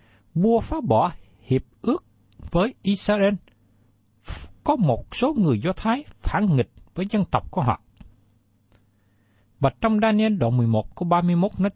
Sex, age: male, 60-79